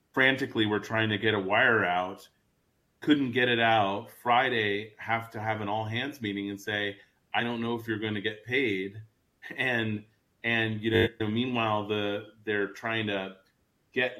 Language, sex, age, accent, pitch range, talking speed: English, male, 30-49, American, 105-125 Hz, 175 wpm